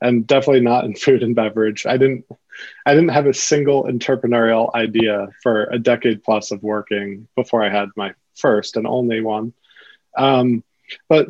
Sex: male